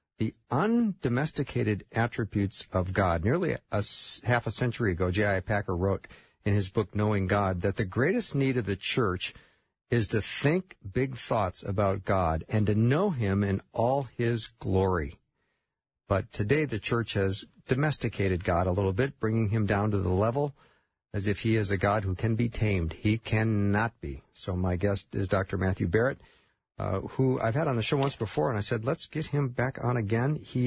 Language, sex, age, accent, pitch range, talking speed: English, male, 50-69, American, 100-125 Hz, 185 wpm